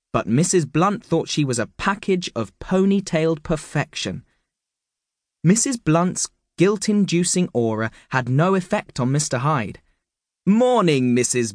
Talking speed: 125 wpm